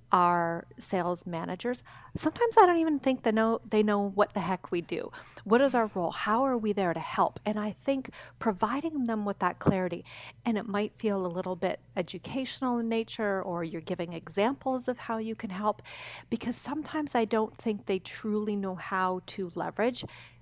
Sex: female